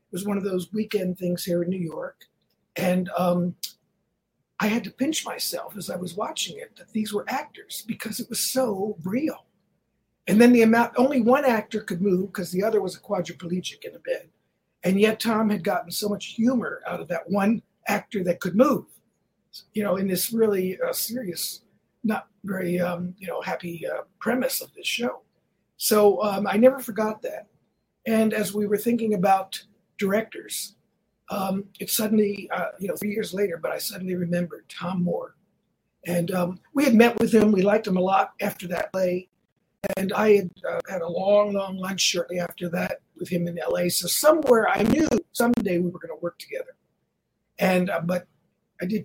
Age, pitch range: 50-69, 180-225 Hz